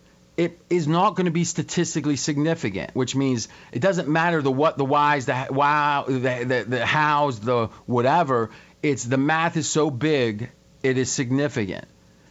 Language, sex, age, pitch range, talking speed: English, male, 40-59, 120-150 Hz, 165 wpm